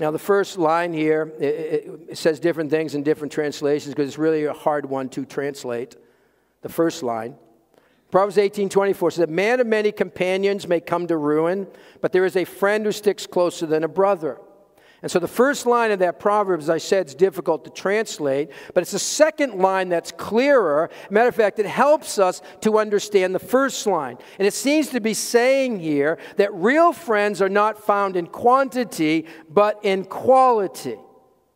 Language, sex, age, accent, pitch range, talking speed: English, male, 50-69, American, 160-235 Hz, 185 wpm